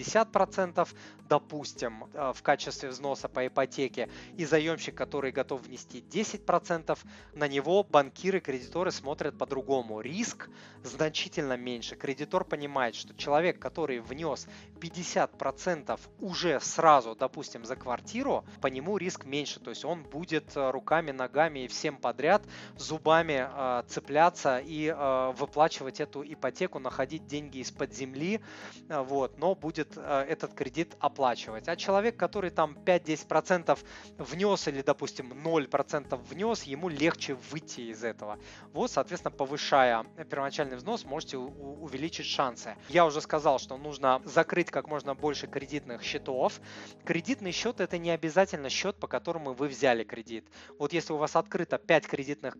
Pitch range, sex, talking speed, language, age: 135-170 Hz, male, 135 wpm, Russian, 20-39